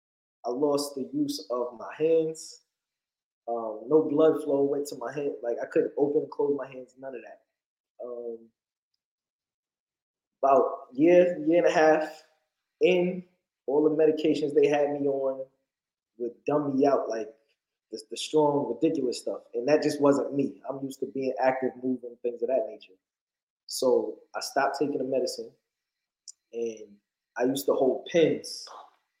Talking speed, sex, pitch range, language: 160 wpm, male, 130-170 Hz, English